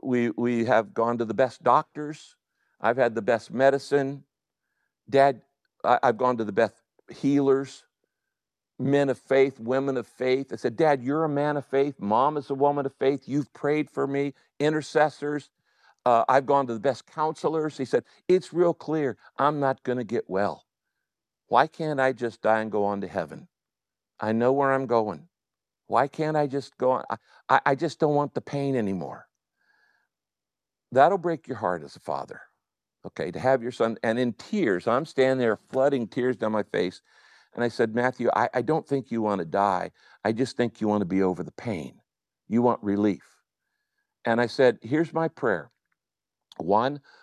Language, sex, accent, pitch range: English, male, American, 115-150 Hz